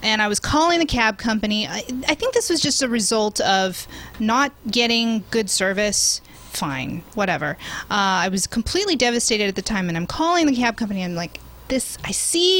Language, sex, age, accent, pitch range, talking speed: English, female, 30-49, American, 205-275 Hz, 195 wpm